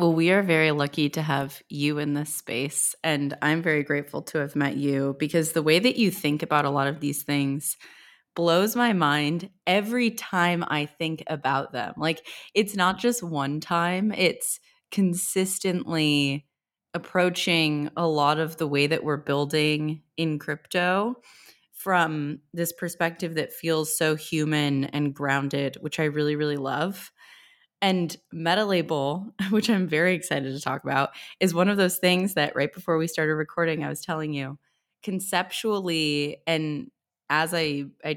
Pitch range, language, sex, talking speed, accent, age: 145-175 Hz, English, female, 160 wpm, American, 20-39